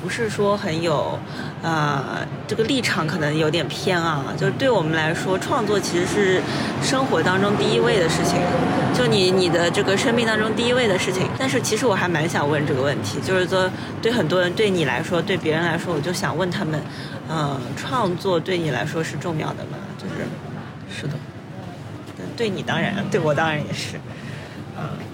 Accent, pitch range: native, 150-185 Hz